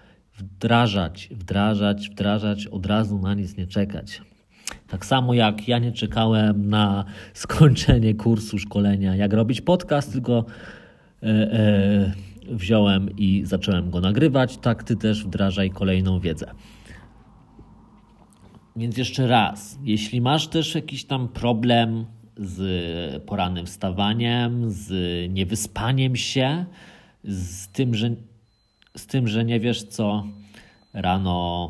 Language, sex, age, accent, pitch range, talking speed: Polish, male, 40-59, native, 100-120 Hz, 115 wpm